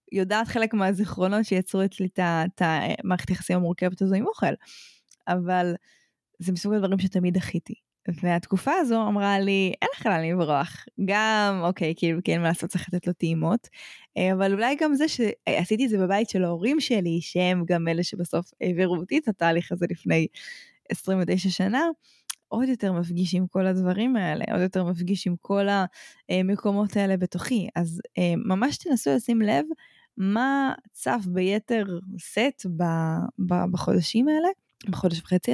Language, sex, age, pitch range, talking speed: Hebrew, female, 20-39, 180-220 Hz, 145 wpm